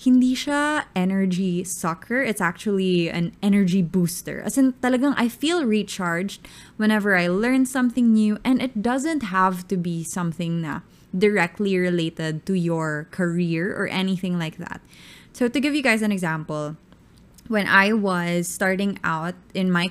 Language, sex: English, female